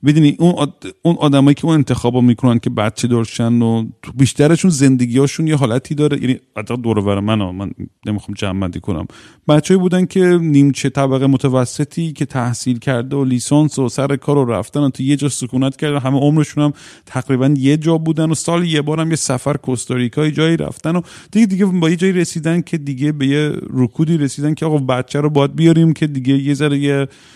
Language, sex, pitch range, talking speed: Persian, male, 115-150 Hz, 195 wpm